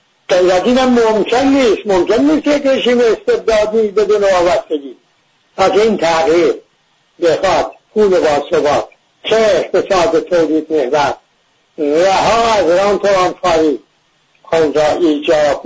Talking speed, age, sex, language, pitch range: 120 wpm, 60-79, male, English, 160-235 Hz